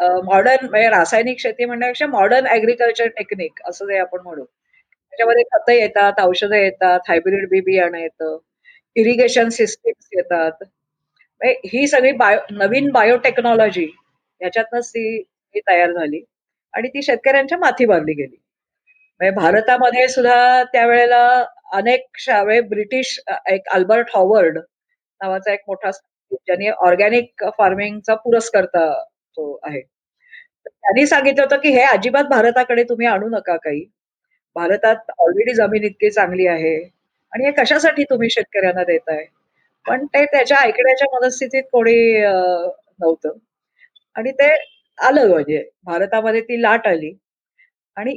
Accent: native